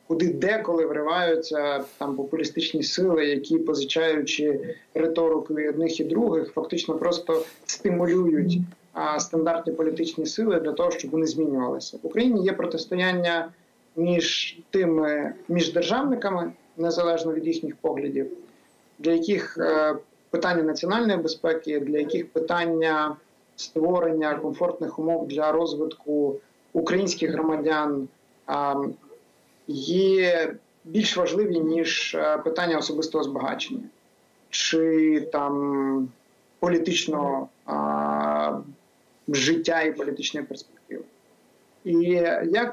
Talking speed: 100 wpm